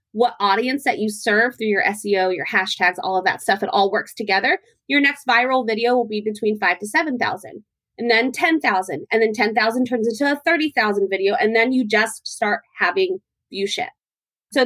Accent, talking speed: American, 195 wpm